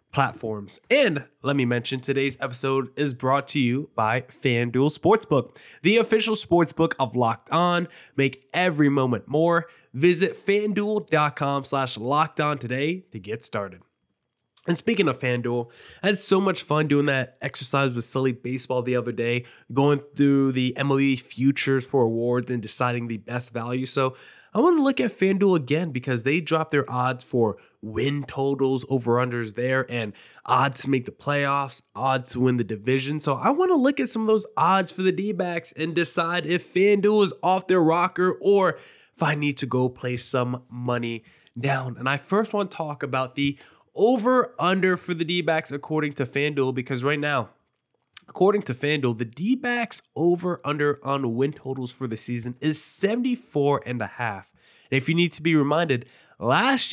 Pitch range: 130-175 Hz